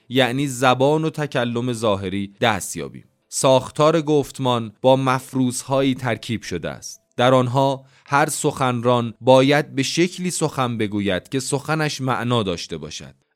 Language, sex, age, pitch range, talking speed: Persian, male, 30-49, 120-150 Hz, 120 wpm